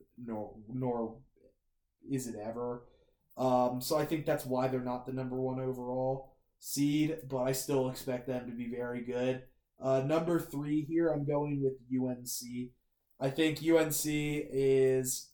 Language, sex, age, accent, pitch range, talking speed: English, male, 20-39, American, 125-150 Hz, 155 wpm